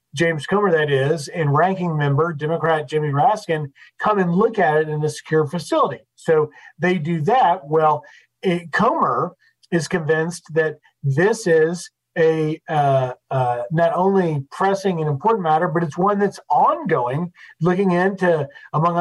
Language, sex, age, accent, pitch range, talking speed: English, male, 40-59, American, 160-200 Hz, 150 wpm